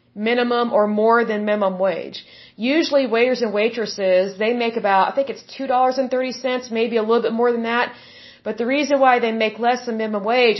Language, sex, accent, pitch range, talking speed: Hindi, female, American, 205-240 Hz, 215 wpm